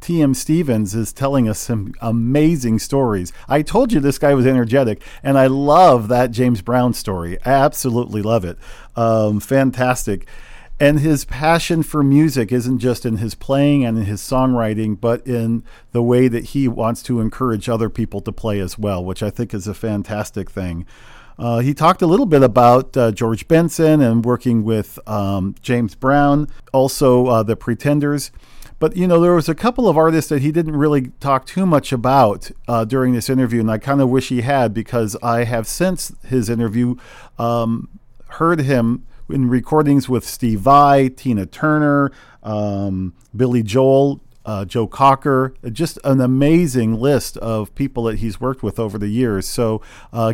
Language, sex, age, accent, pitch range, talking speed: English, male, 40-59, American, 115-140 Hz, 175 wpm